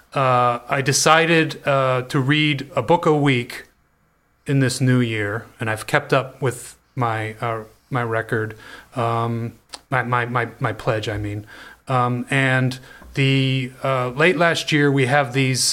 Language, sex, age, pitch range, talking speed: English, male, 30-49, 115-135 Hz, 155 wpm